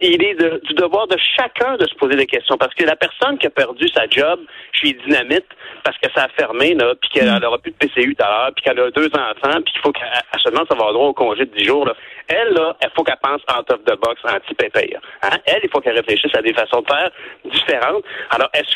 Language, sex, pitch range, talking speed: French, male, 305-430 Hz, 260 wpm